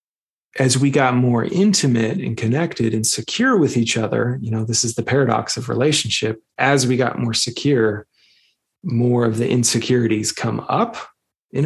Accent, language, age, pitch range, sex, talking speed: American, English, 30-49, 110-130 Hz, male, 165 wpm